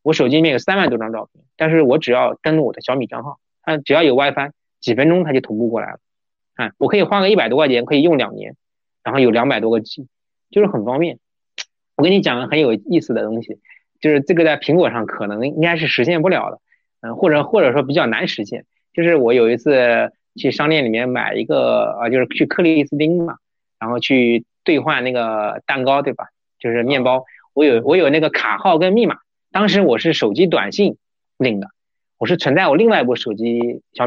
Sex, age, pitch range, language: male, 20-39, 120-165 Hz, Chinese